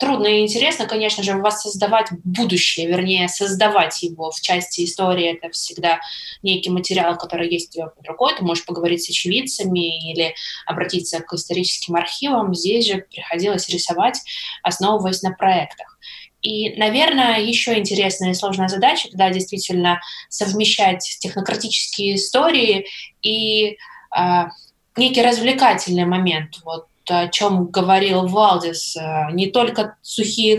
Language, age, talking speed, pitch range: Russian, 20-39, 130 wpm, 175-210 Hz